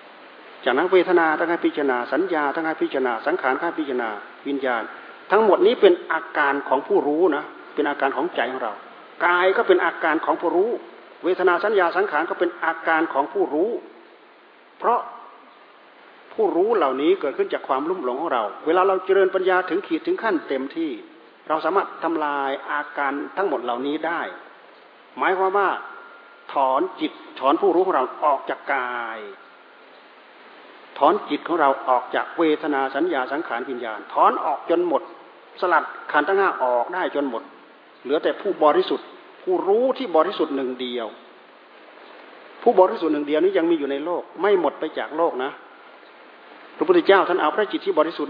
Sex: male